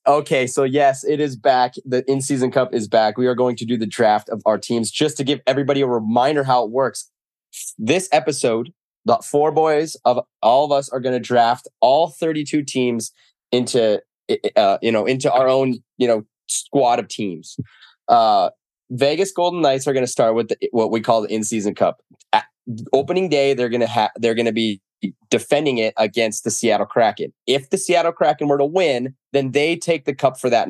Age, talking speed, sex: 20-39, 195 wpm, male